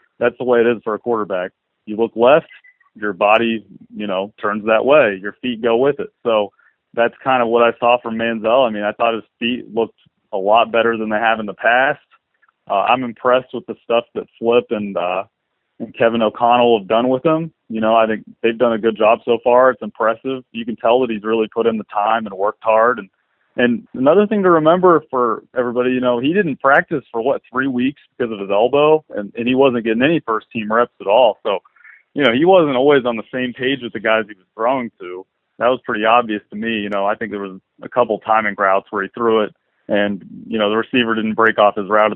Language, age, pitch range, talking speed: English, 30-49, 110-125 Hz, 240 wpm